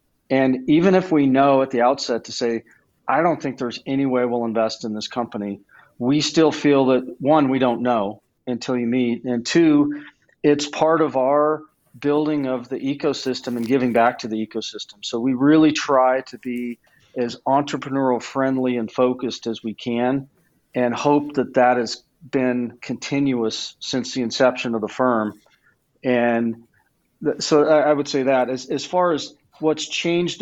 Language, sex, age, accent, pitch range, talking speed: English, male, 40-59, American, 120-140 Hz, 175 wpm